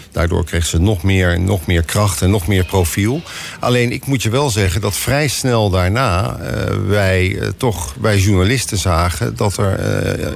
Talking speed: 180 wpm